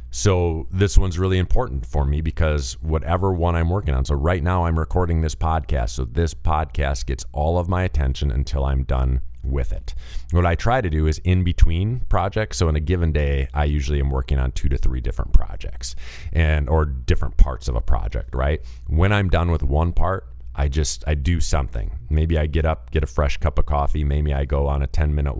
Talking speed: 215 wpm